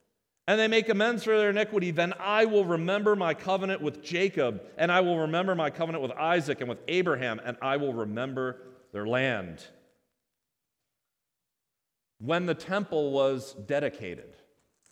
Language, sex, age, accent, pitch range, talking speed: English, male, 40-59, American, 155-220 Hz, 150 wpm